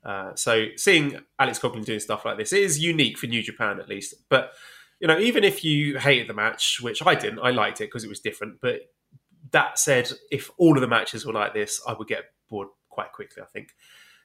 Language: English